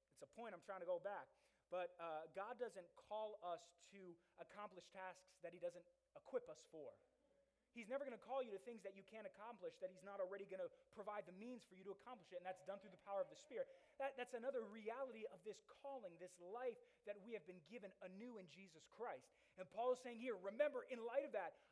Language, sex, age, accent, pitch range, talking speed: English, male, 20-39, American, 190-275 Hz, 235 wpm